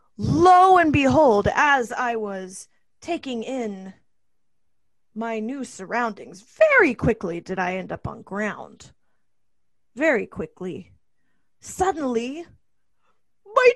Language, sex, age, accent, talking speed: English, female, 30-49, American, 100 wpm